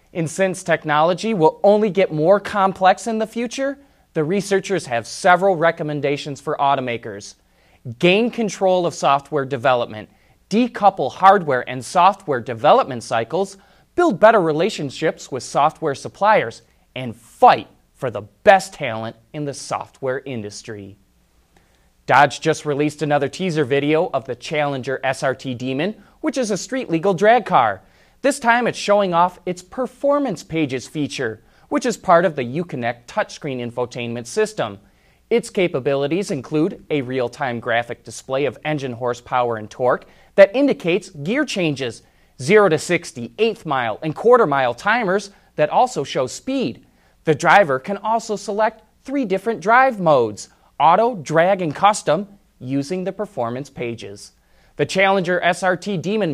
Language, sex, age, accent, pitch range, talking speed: English, male, 30-49, American, 130-200 Hz, 140 wpm